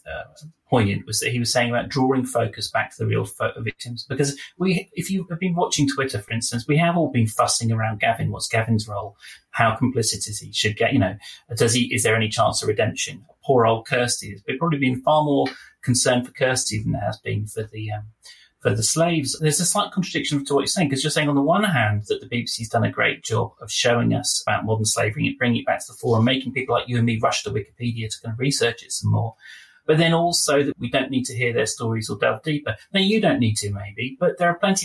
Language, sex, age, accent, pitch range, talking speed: English, male, 30-49, British, 110-145 Hz, 260 wpm